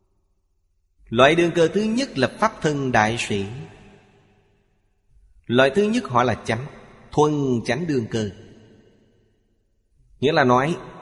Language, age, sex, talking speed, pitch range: Vietnamese, 30-49, male, 125 wpm, 105-135 Hz